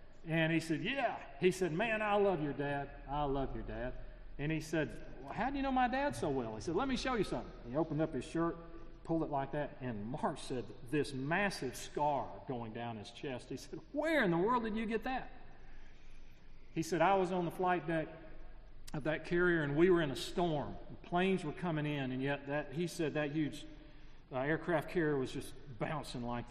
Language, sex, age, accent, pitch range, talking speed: English, male, 40-59, American, 130-165 Hz, 225 wpm